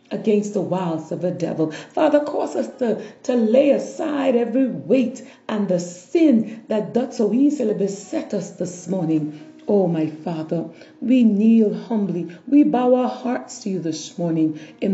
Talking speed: 165 wpm